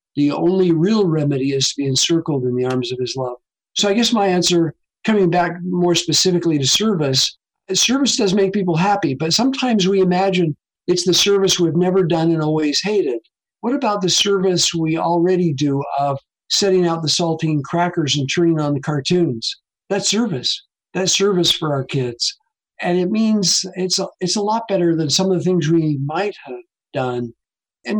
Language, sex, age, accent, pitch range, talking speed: English, male, 50-69, American, 150-190 Hz, 185 wpm